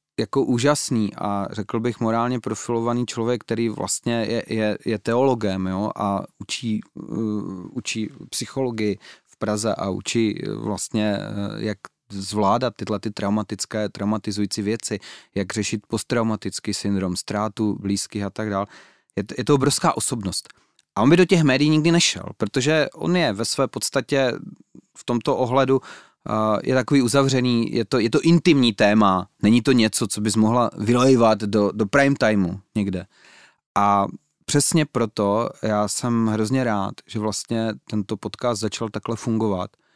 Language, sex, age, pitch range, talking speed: Slovak, male, 30-49, 105-125 Hz, 145 wpm